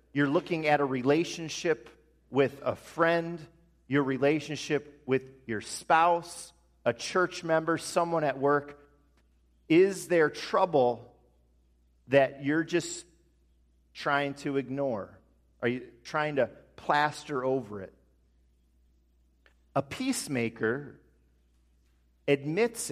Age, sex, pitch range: 40-59, male, 110-150 Hz